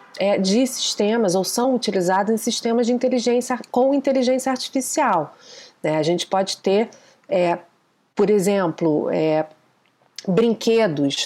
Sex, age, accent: female, 30-49, Brazilian